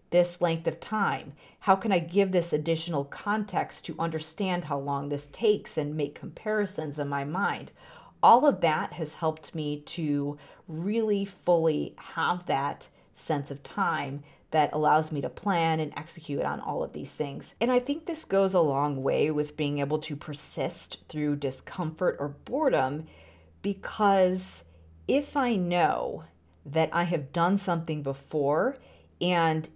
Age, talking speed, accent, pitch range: 40-59, 155 wpm, American, 145-190 Hz